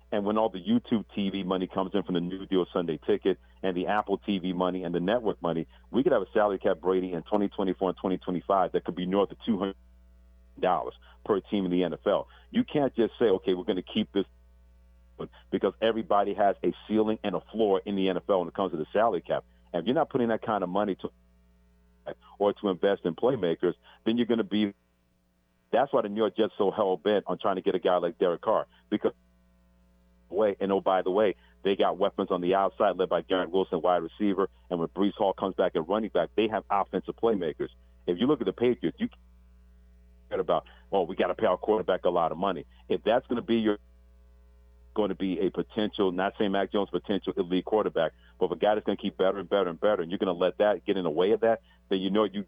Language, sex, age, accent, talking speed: English, male, 40-59, American, 240 wpm